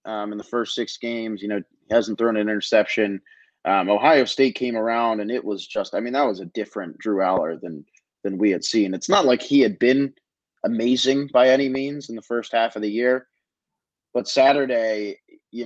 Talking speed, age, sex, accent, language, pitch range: 210 wpm, 30-49, male, American, English, 110-140 Hz